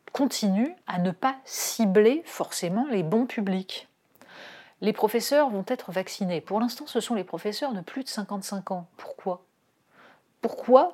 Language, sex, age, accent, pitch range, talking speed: French, female, 30-49, French, 175-235 Hz, 150 wpm